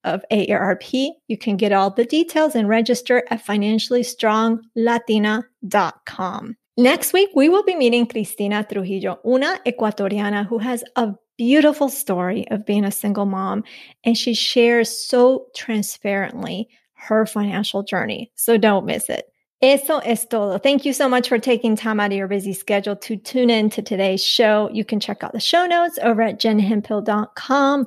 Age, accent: 30-49, American